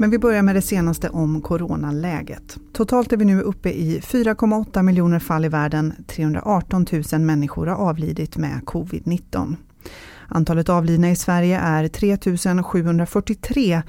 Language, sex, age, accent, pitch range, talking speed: English, female, 30-49, Swedish, 155-195 Hz, 145 wpm